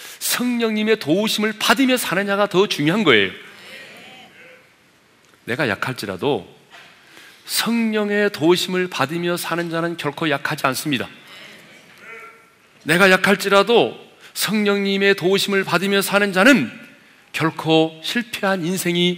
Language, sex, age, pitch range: Korean, male, 40-59, 145-205 Hz